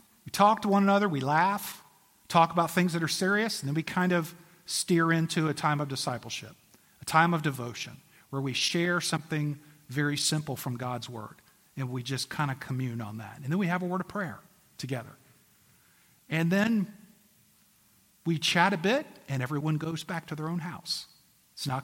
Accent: American